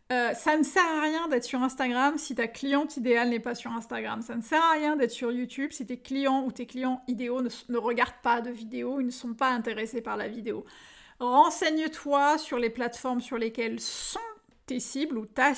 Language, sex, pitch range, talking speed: French, female, 240-280 Hz, 220 wpm